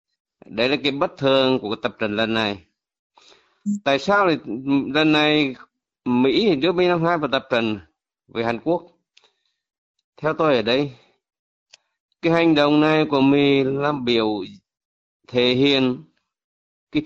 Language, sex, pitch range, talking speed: Vietnamese, male, 125-155 Hz, 150 wpm